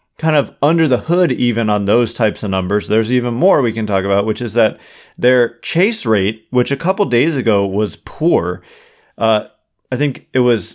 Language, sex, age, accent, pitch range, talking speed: English, male, 30-49, American, 105-130 Hz, 200 wpm